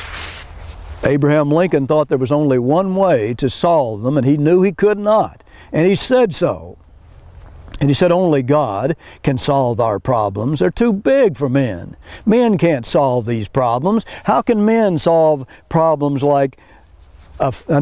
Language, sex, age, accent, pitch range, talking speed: English, male, 60-79, American, 105-170 Hz, 160 wpm